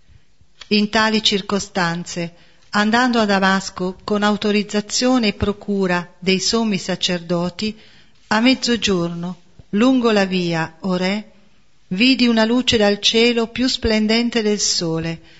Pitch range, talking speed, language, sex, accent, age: 175-220 Hz, 115 wpm, Italian, female, native, 40-59